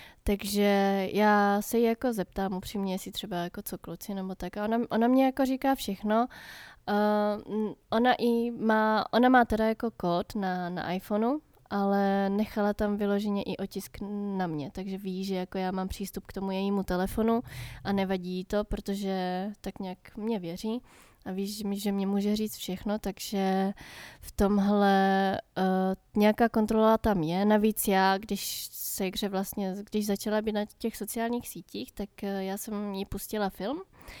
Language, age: Czech, 20-39